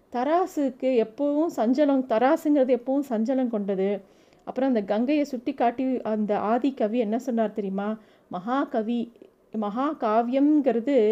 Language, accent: Tamil, native